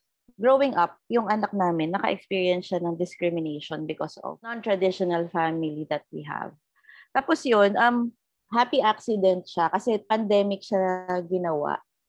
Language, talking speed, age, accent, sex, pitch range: Filipino, 125 wpm, 20-39, native, female, 170-240 Hz